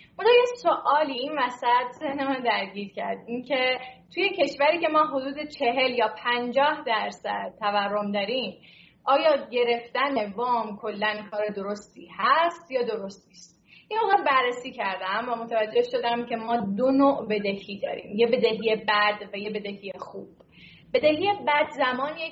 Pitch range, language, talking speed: 210-270 Hz, Persian, 135 wpm